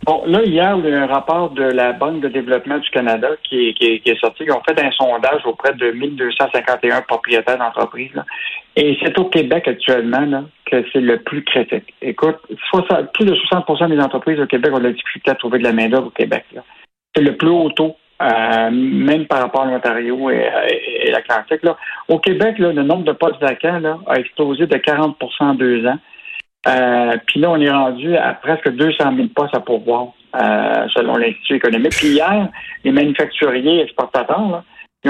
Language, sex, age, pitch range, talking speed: French, male, 60-79, 130-170 Hz, 205 wpm